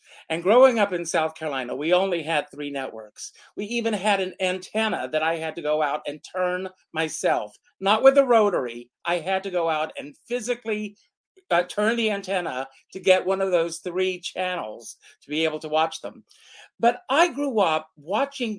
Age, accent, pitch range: 50-69, American, 155-220 Hz